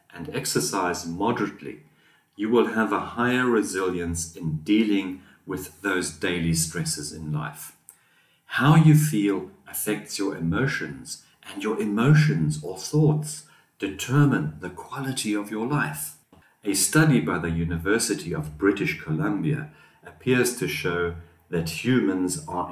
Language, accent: English, German